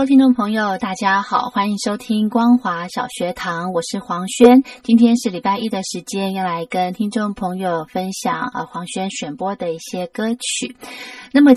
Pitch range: 185-250 Hz